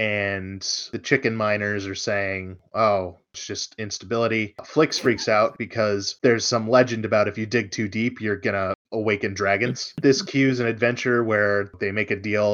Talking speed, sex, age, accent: 170 wpm, male, 20-39, American